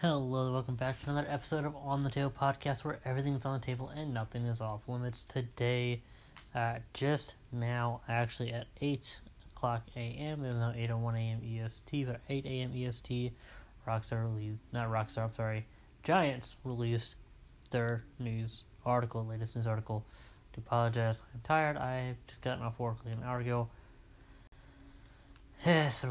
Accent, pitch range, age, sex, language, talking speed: American, 115-140 Hz, 20-39, male, English, 170 wpm